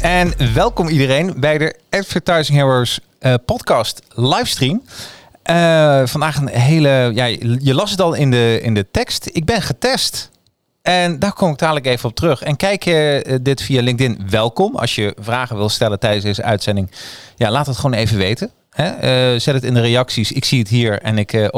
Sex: male